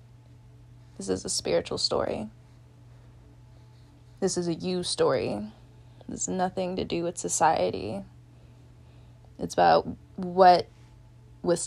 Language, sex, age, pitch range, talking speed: English, female, 20-39, 120-185 Hz, 110 wpm